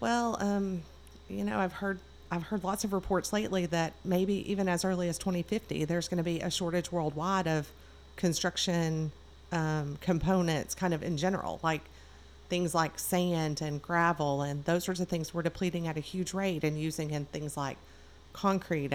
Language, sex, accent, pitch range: English, female, American, 145-175 Hz